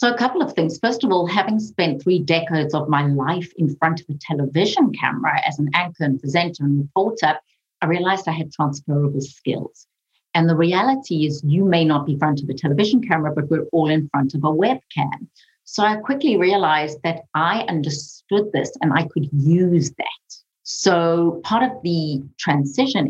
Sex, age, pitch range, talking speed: female, 50-69, 150-185 Hz, 190 wpm